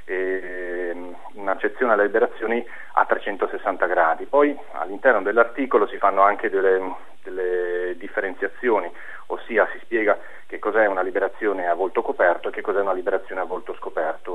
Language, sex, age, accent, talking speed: Italian, male, 40-59, native, 140 wpm